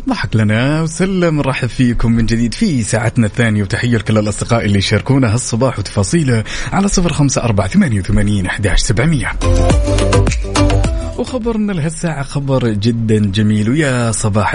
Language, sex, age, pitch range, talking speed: Arabic, male, 30-49, 100-135 Hz, 130 wpm